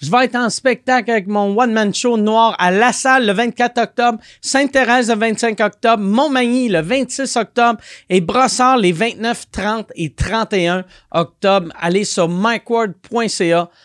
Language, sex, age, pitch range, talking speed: French, male, 40-59, 175-245 Hz, 155 wpm